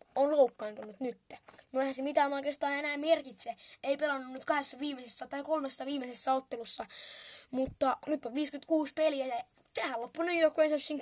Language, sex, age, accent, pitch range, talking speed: Finnish, female, 20-39, native, 255-305 Hz, 165 wpm